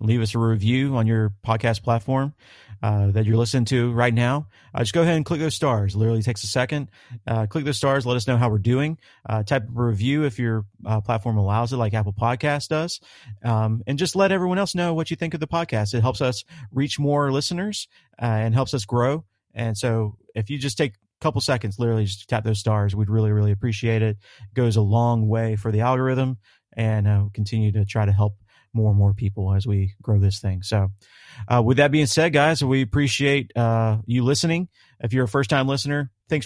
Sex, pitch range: male, 110-145 Hz